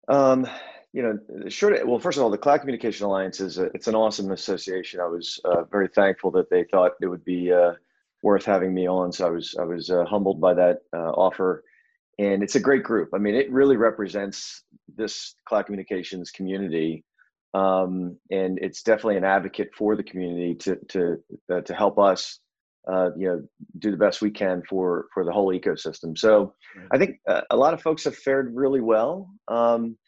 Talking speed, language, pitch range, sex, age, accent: 200 wpm, English, 95-115 Hz, male, 30-49, American